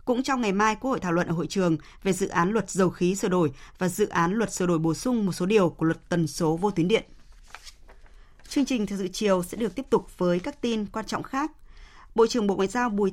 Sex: female